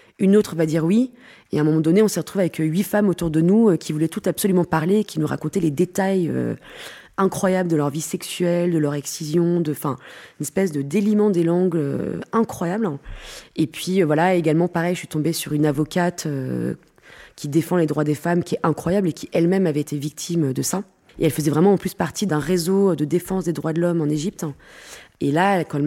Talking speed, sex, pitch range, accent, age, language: 230 wpm, female, 155-195 Hz, French, 20-39, French